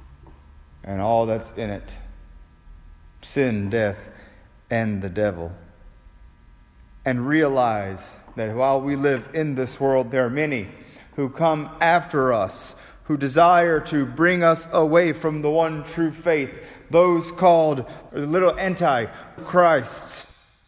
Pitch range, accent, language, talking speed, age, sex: 100-160 Hz, American, English, 120 wpm, 40-59, male